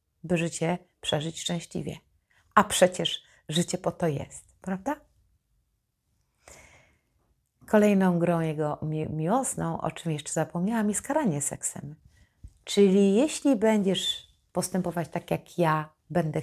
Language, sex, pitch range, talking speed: Polish, female, 155-200 Hz, 110 wpm